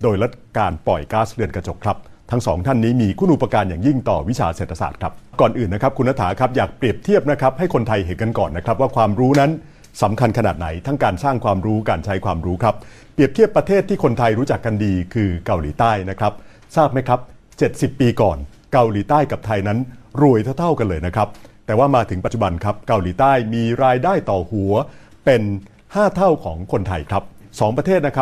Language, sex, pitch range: Thai, male, 100-135 Hz